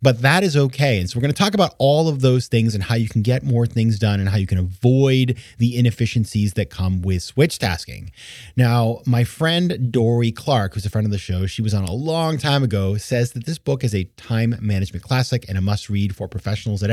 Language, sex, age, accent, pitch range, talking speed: English, male, 30-49, American, 100-130 Hz, 240 wpm